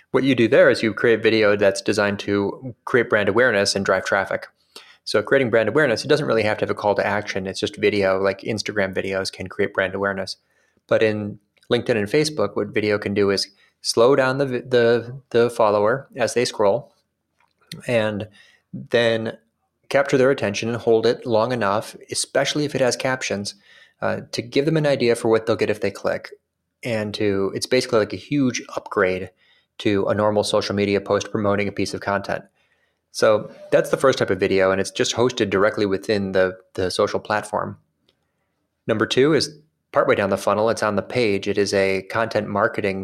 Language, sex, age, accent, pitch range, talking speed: English, male, 20-39, American, 100-115 Hz, 195 wpm